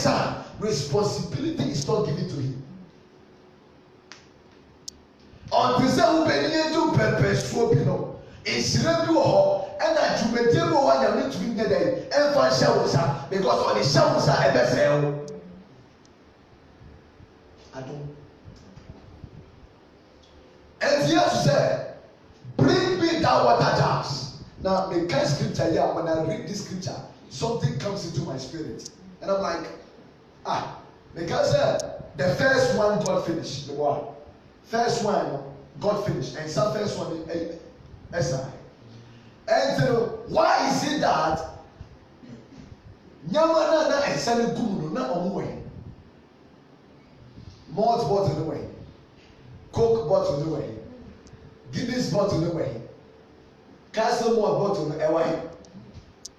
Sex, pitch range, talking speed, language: male, 130-215 Hz, 115 wpm, English